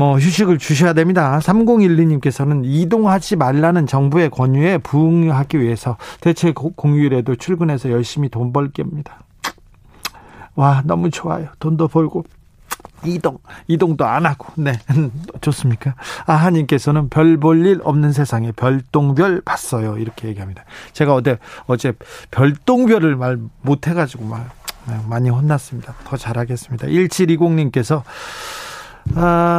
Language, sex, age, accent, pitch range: Korean, male, 40-59, native, 135-170 Hz